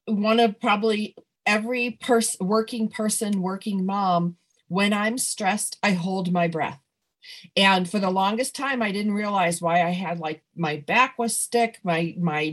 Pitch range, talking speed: 190-235 Hz, 165 wpm